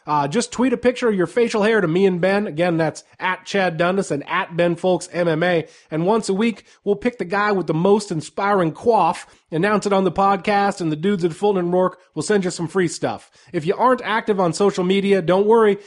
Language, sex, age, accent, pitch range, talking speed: English, male, 30-49, American, 165-205 Hz, 230 wpm